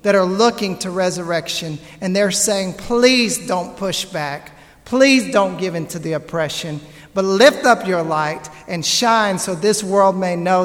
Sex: male